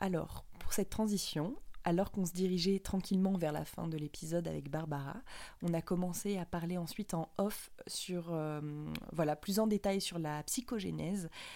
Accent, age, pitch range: French, 20-39, 170-205 Hz